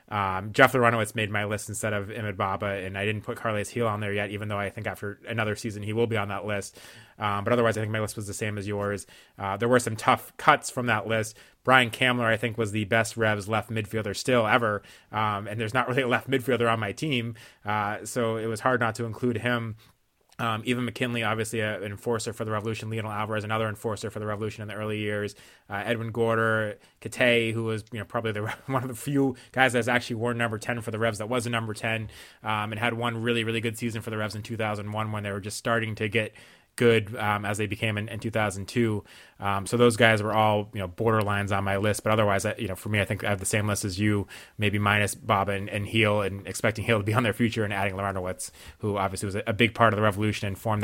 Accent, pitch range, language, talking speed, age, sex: American, 105-115 Hz, English, 255 wpm, 20-39, male